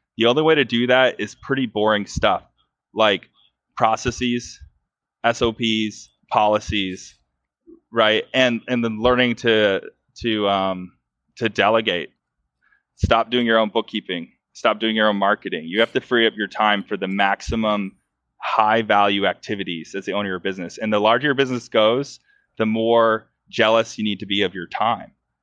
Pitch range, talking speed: 105-125 Hz, 160 wpm